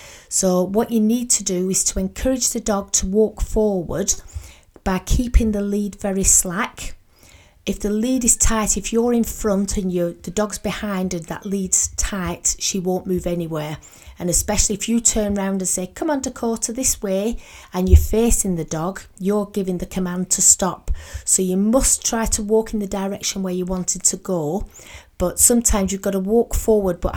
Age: 30-49